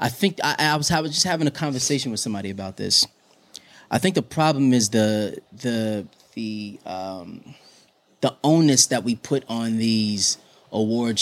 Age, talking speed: 20-39, 170 wpm